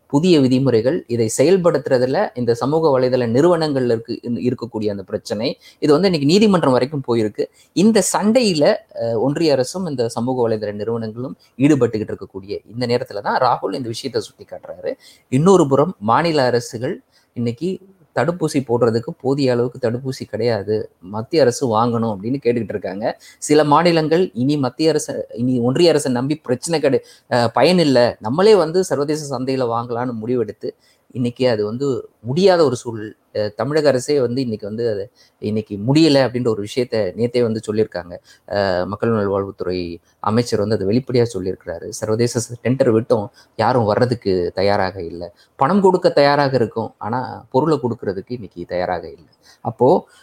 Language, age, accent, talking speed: Tamil, 20-39, native, 140 wpm